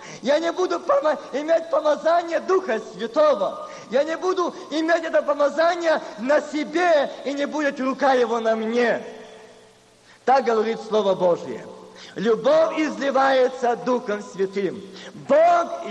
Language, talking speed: Russian, 115 wpm